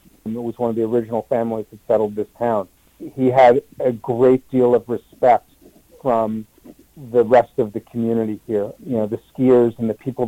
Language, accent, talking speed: English, American, 185 wpm